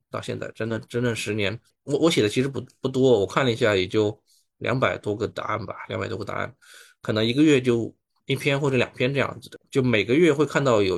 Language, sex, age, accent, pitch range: Chinese, male, 20-39, native, 110-140 Hz